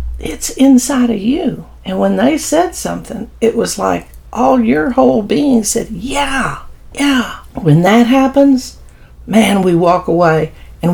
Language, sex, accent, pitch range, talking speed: English, female, American, 175-245 Hz, 150 wpm